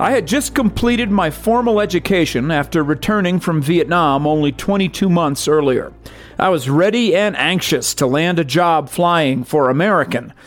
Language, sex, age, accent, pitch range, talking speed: English, male, 50-69, American, 145-210 Hz, 155 wpm